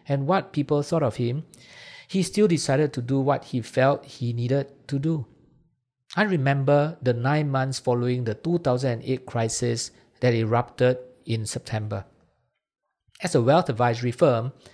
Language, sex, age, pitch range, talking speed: English, male, 50-69, 120-145 Hz, 145 wpm